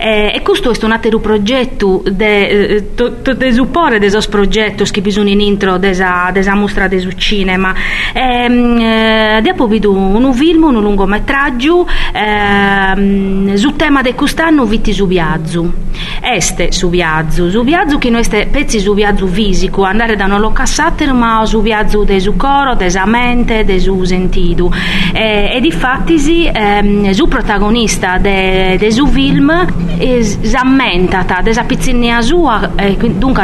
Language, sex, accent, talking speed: Italian, female, native, 130 wpm